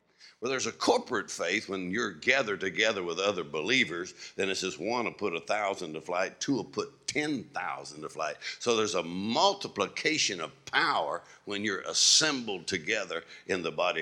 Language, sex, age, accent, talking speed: English, male, 60-79, American, 175 wpm